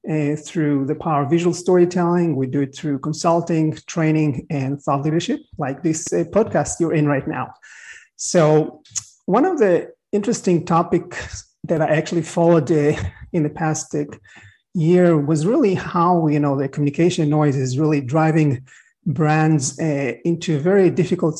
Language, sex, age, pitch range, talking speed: English, male, 30-49, 150-180 Hz, 160 wpm